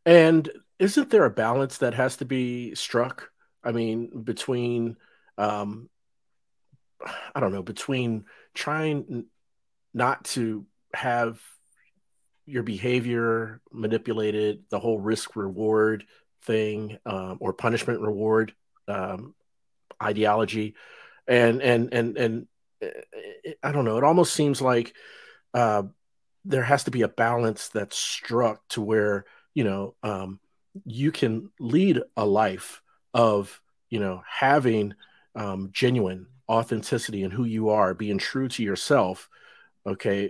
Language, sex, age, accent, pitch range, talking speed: English, male, 40-59, American, 100-125 Hz, 125 wpm